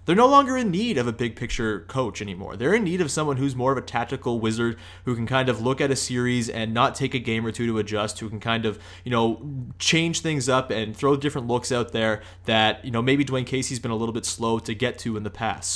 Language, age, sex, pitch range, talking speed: English, 20-39, male, 110-130 Hz, 270 wpm